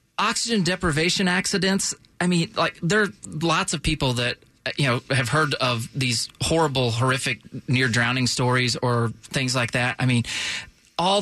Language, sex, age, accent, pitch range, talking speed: English, male, 30-49, American, 125-180 Hz, 155 wpm